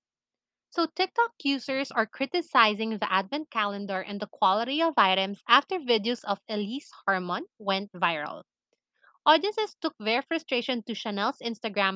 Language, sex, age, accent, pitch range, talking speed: English, female, 20-39, Filipino, 195-270 Hz, 135 wpm